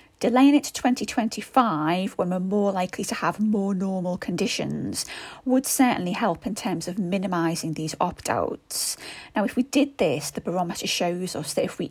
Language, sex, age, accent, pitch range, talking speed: English, female, 30-49, British, 165-235 Hz, 170 wpm